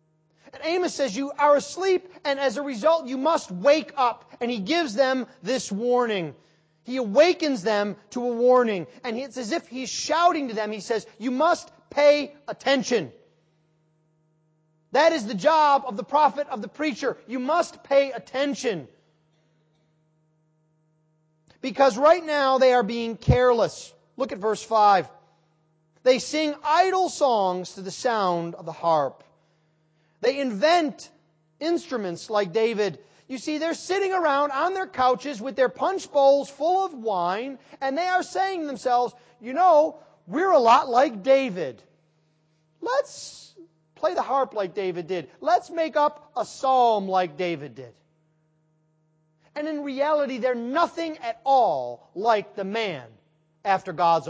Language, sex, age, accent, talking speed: English, male, 30-49, American, 150 wpm